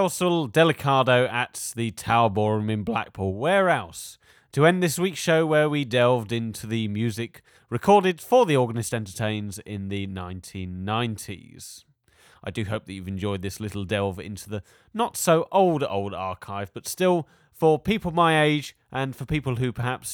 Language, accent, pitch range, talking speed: English, British, 105-150 Hz, 155 wpm